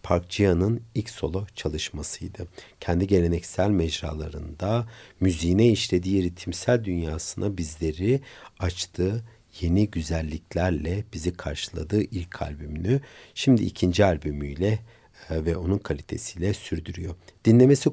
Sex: male